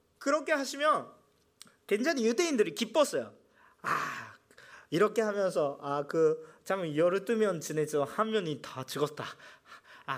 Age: 40-59